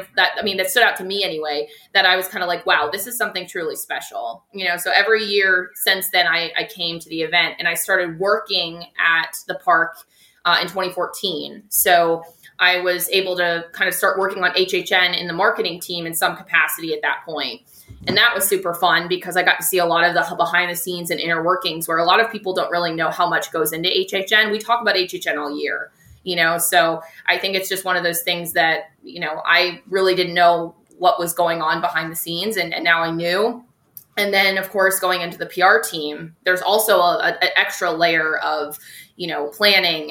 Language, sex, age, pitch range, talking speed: English, female, 20-39, 170-190 Hz, 230 wpm